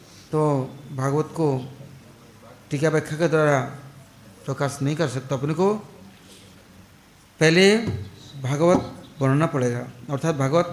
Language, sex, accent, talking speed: English, male, Indian, 105 wpm